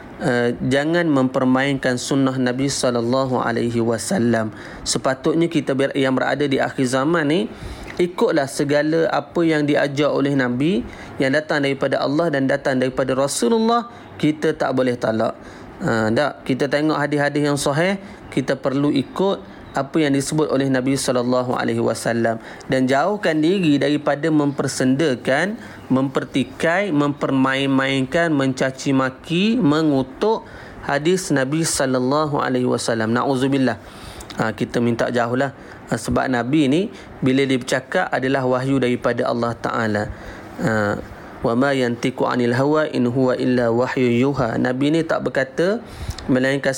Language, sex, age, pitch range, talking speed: Malay, male, 30-49, 125-150 Hz, 120 wpm